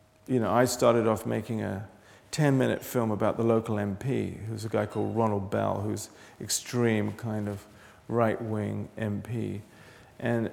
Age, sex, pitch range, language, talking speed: 40-59, male, 105-125 Hz, English, 160 wpm